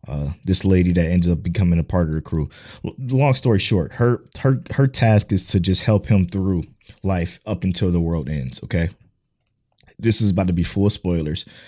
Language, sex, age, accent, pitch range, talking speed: English, male, 20-39, American, 85-100 Hz, 210 wpm